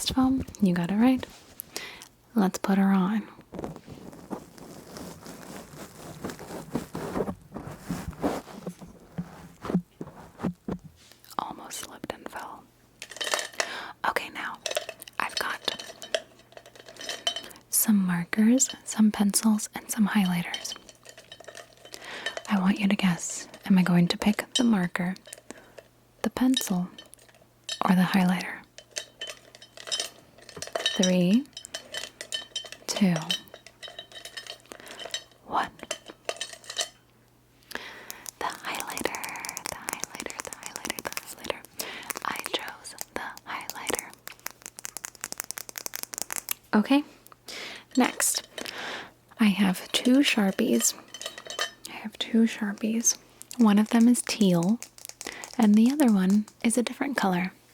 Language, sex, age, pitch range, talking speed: English, female, 20-39, 185-240 Hz, 80 wpm